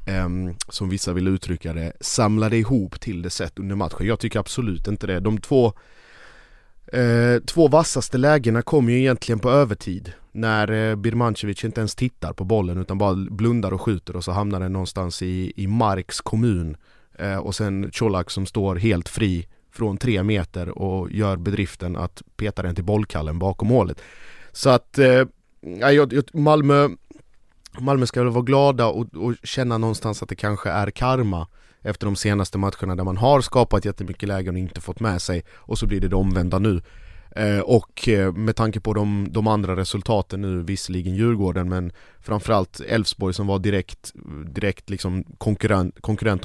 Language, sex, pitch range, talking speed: Swedish, male, 95-115 Hz, 175 wpm